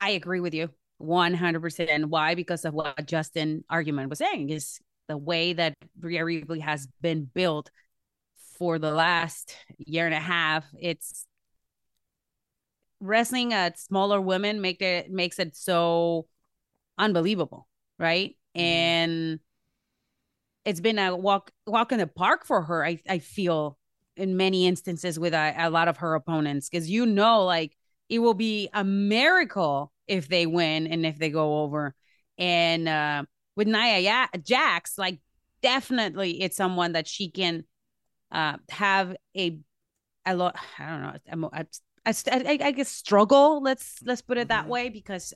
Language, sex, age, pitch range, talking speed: English, female, 30-49, 165-200 Hz, 155 wpm